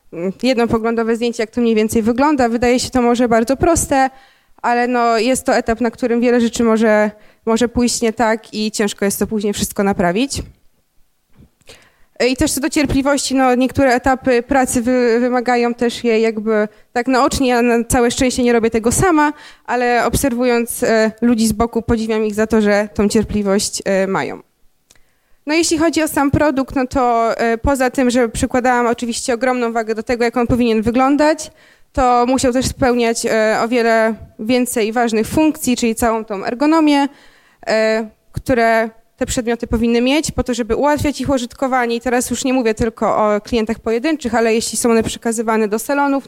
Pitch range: 225-255 Hz